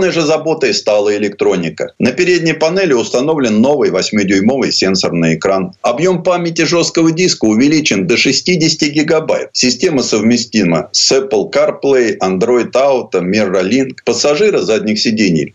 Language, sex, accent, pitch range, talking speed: Russian, male, native, 115-165 Hz, 125 wpm